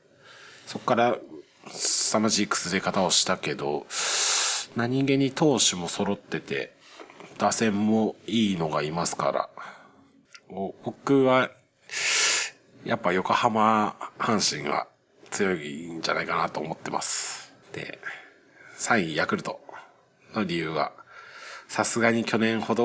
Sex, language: male, Japanese